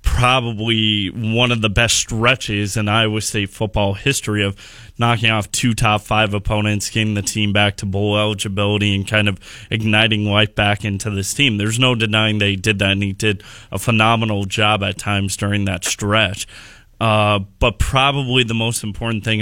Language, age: English, 20-39